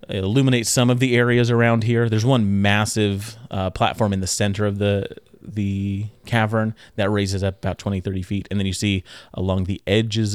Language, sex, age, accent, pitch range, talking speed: English, male, 30-49, American, 95-110 Hz, 195 wpm